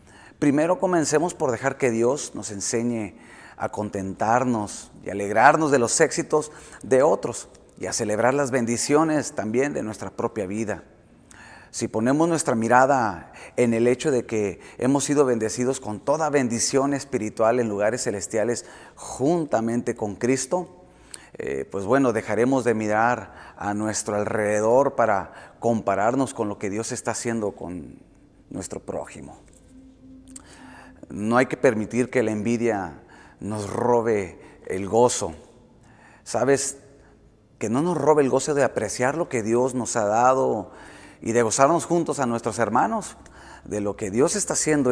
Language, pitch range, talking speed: Spanish, 105-135 Hz, 145 wpm